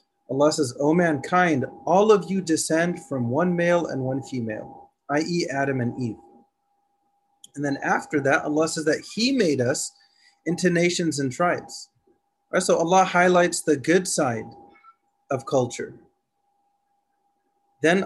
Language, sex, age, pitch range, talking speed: English, male, 30-49, 135-190 Hz, 140 wpm